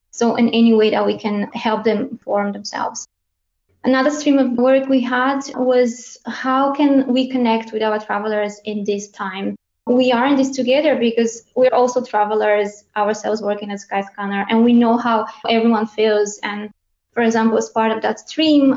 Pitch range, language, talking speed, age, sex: 210-245 Hz, English, 175 wpm, 20-39, female